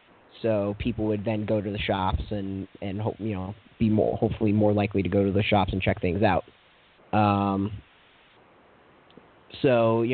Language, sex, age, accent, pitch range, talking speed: English, male, 30-49, American, 105-120 Hz, 170 wpm